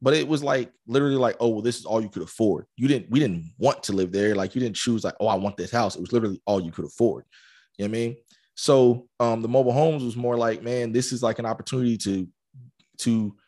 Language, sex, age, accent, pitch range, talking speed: English, male, 20-39, American, 115-130 Hz, 265 wpm